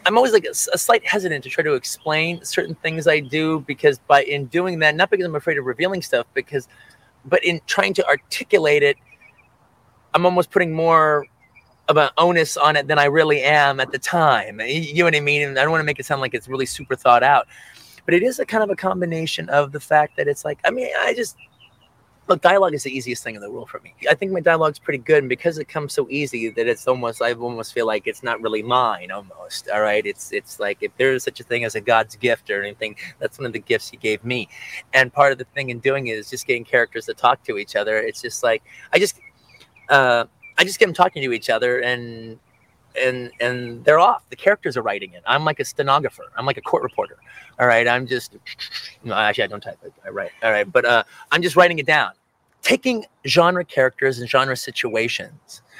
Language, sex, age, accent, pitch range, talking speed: English, male, 30-49, American, 125-170 Hz, 240 wpm